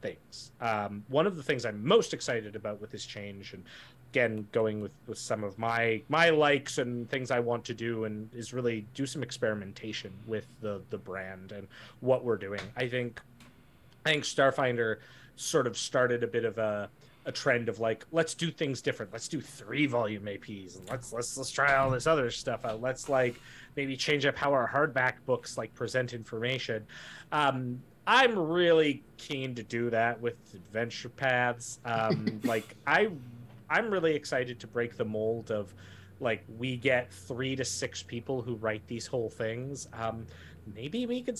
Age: 30-49